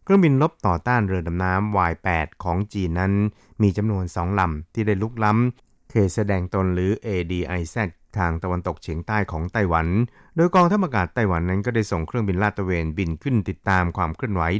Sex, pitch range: male, 85-105 Hz